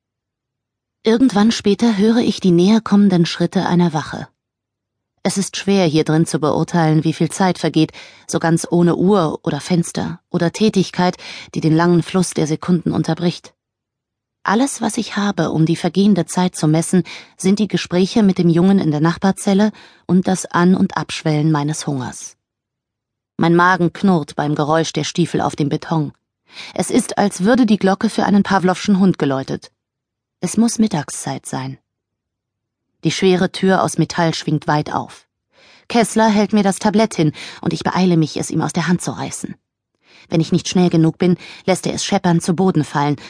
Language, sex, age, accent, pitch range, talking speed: German, female, 30-49, German, 150-190 Hz, 175 wpm